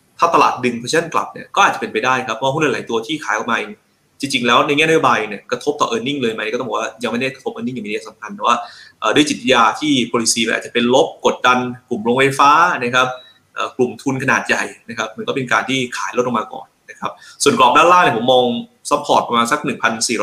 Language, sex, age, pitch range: Thai, male, 20-39, 115-145 Hz